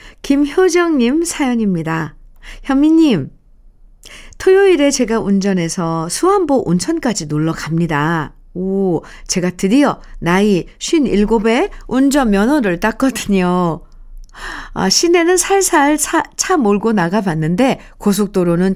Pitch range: 185-270 Hz